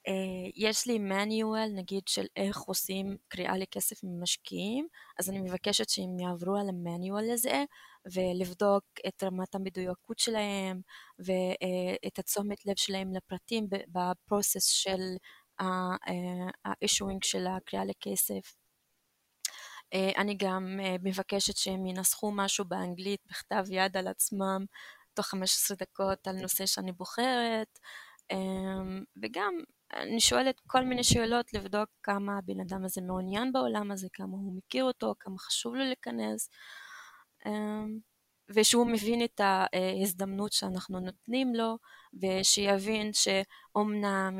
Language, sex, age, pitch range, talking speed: Hebrew, female, 20-39, 185-215 Hz, 120 wpm